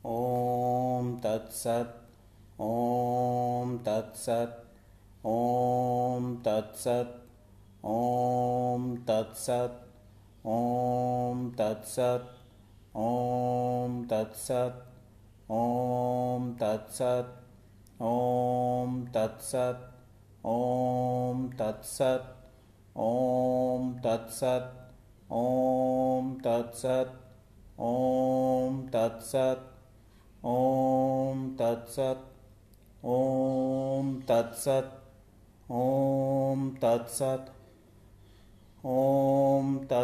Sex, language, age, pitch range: male, Hindi, 30-49, 110-130 Hz